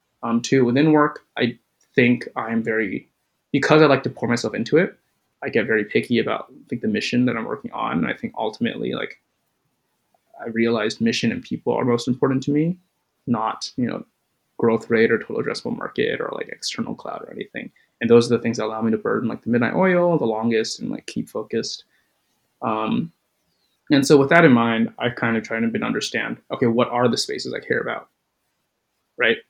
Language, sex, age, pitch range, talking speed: English, male, 20-39, 115-145 Hz, 205 wpm